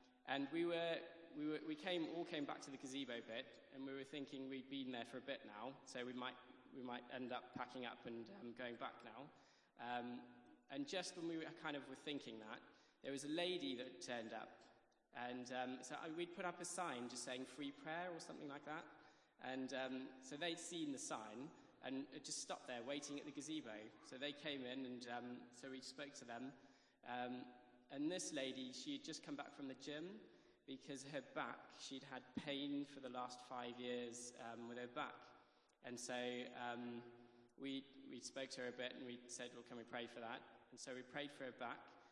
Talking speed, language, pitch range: 220 wpm, English, 125-145 Hz